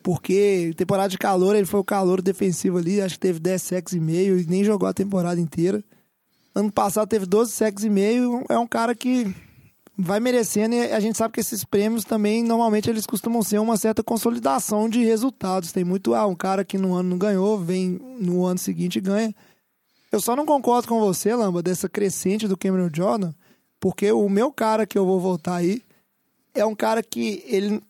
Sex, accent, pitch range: male, Brazilian, 185-220 Hz